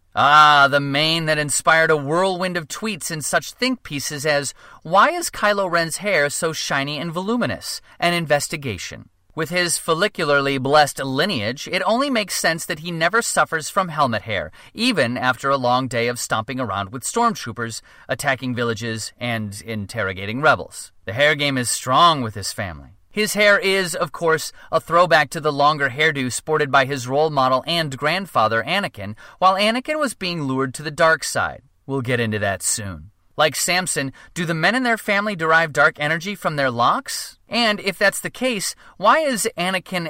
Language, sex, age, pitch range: English, male, 30-49, 130-175 Hz